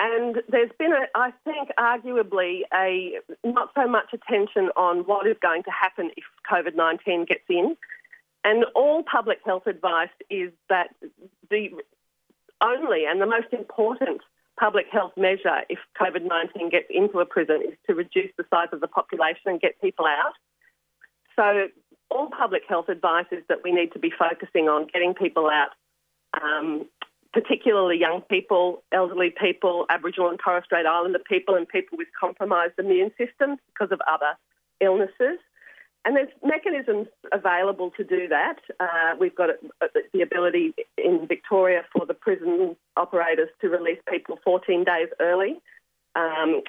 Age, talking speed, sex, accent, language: 40-59, 155 wpm, female, Australian, English